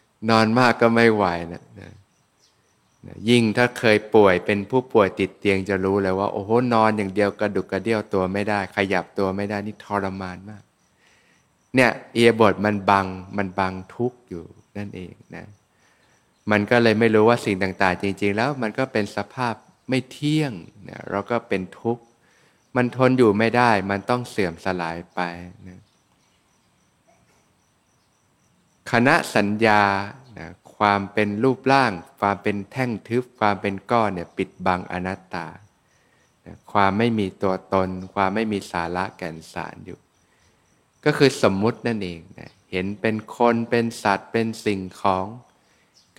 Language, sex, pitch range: Thai, male, 95-115 Hz